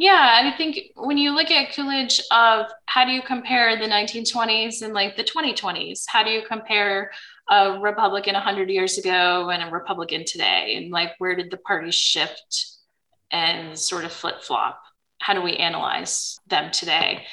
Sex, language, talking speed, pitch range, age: female, English, 175 wpm, 175-240 Hz, 20-39